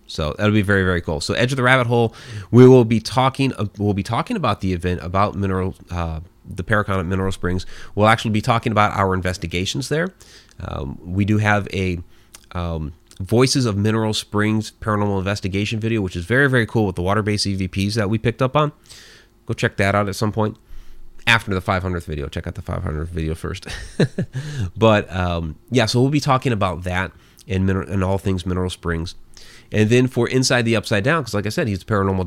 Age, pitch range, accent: 30-49, 90-110 Hz, American